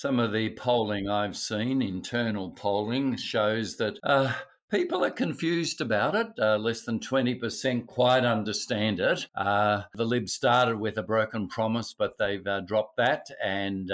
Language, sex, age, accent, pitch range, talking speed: English, male, 50-69, Australian, 105-125 Hz, 160 wpm